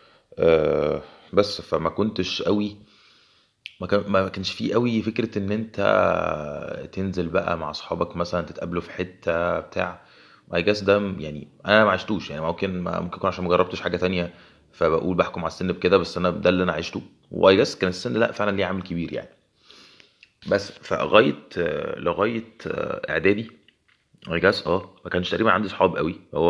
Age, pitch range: 20-39, 80-105 Hz